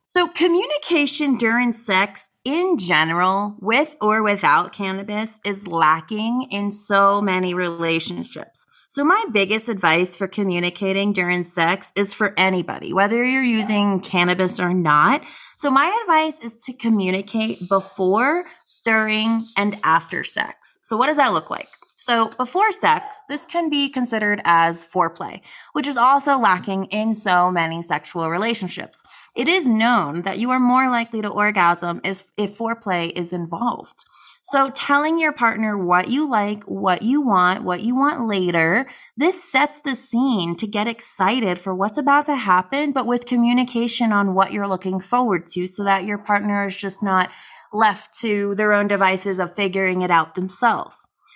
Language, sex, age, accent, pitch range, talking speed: English, female, 20-39, American, 185-245 Hz, 155 wpm